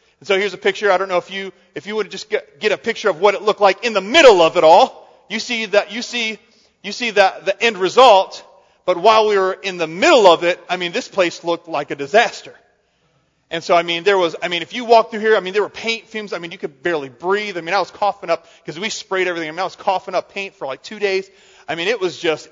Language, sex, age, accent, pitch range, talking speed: English, male, 30-49, American, 195-260 Hz, 280 wpm